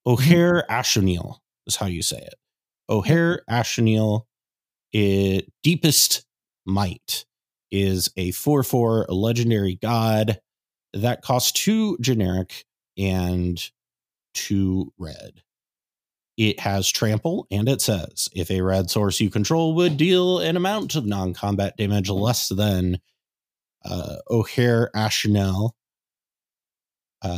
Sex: male